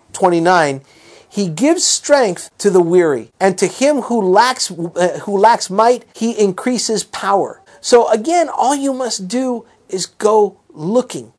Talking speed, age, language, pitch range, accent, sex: 150 wpm, 50-69, English, 165-225 Hz, American, male